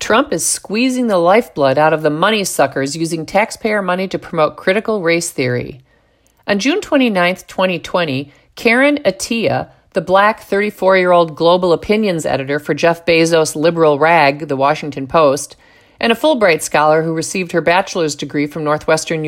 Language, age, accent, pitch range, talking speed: English, 50-69, American, 155-190 Hz, 155 wpm